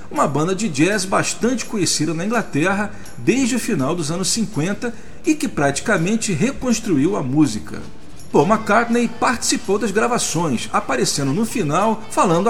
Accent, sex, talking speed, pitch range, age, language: Brazilian, male, 140 wpm, 165-235 Hz, 40-59, Portuguese